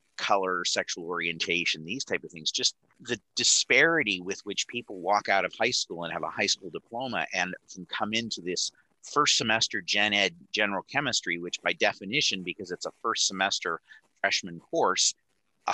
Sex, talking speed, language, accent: male, 170 wpm, English, American